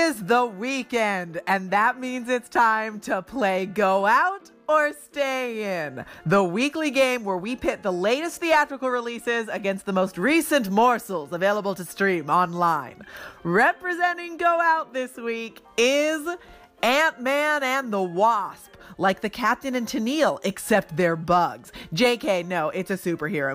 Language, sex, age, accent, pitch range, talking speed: English, female, 30-49, American, 190-285 Hz, 145 wpm